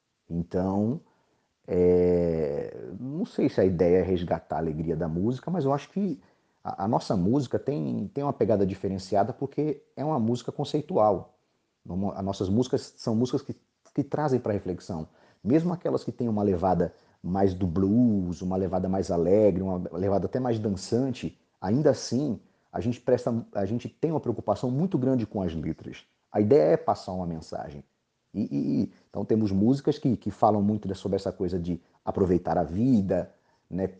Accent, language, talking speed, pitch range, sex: Brazilian, Spanish, 170 wpm, 90-120 Hz, male